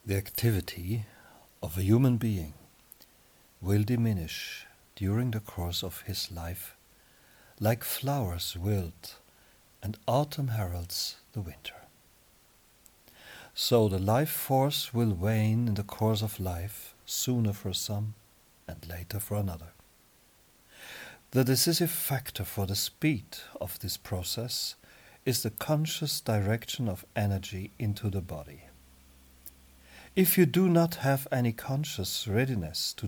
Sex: male